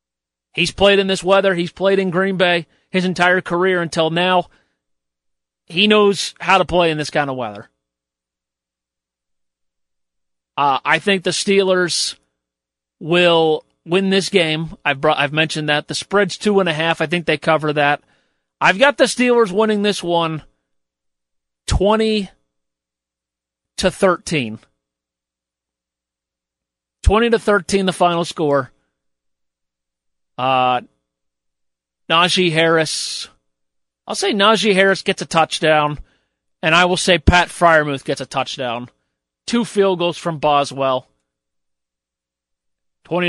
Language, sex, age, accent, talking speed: English, male, 40-59, American, 125 wpm